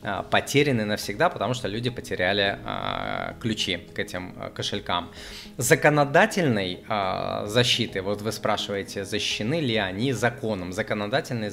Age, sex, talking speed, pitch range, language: 20-39, male, 105 wpm, 100-130 Hz, Russian